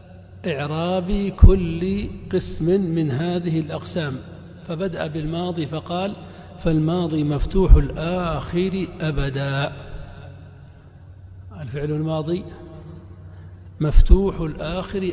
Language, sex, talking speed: Arabic, male, 65 wpm